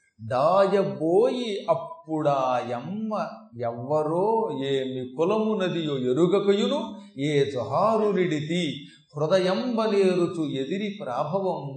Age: 30-49